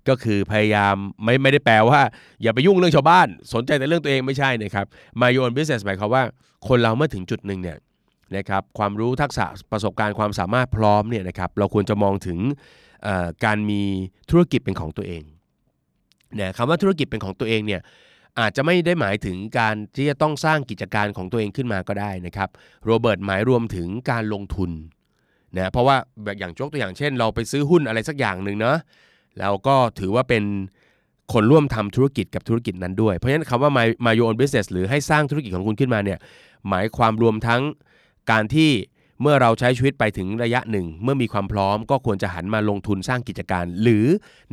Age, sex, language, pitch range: 20-39, male, Thai, 100-130 Hz